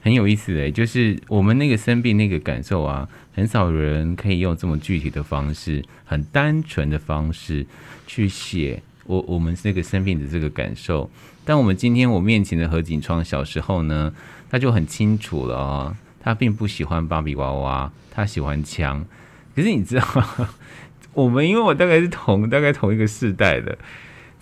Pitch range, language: 80-120 Hz, Chinese